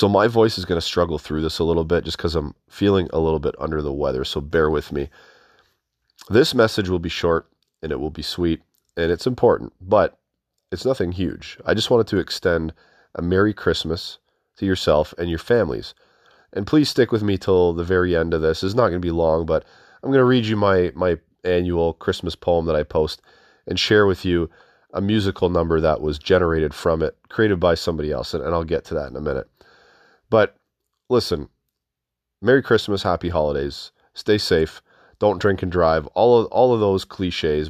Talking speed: 205 wpm